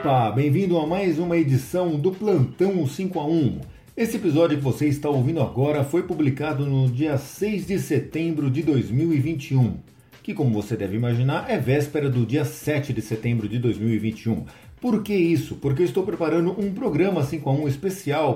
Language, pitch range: Portuguese, 125-175 Hz